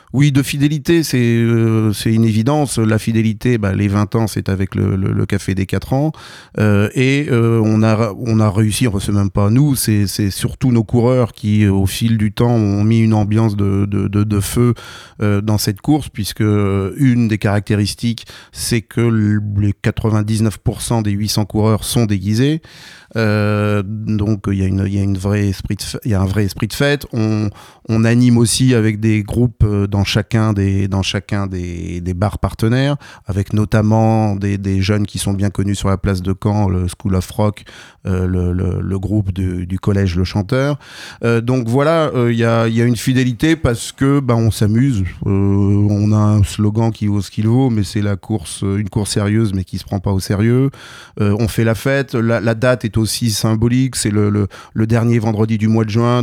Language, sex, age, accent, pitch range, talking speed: French, male, 30-49, French, 100-115 Hz, 200 wpm